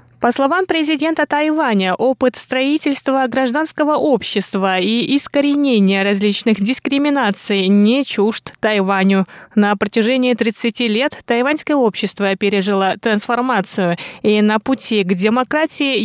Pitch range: 195-255 Hz